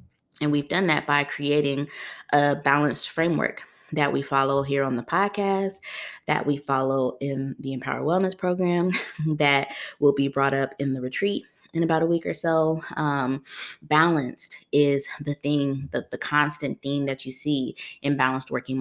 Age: 20-39